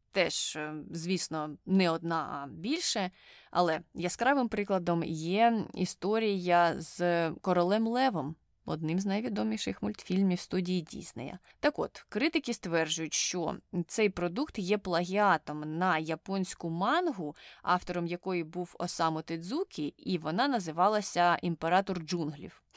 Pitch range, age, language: 170-215 Hz, 20-39, Ukrainian